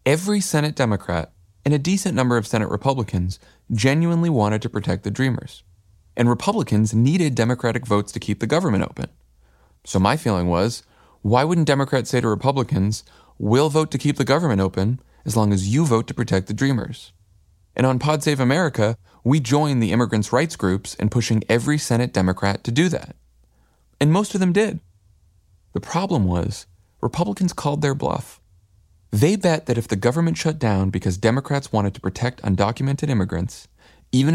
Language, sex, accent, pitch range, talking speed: English, male, American, 95-140 Hz, 175 wpm